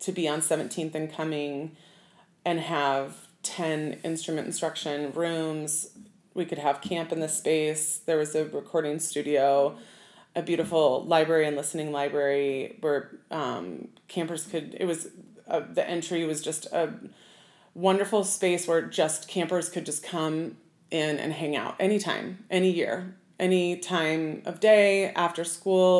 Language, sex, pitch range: English, female, 150-180 Hz